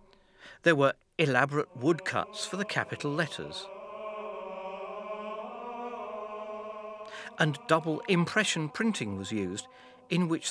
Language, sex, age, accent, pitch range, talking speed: English, male, 50-69, British, 115-190 Hz, 90 wpm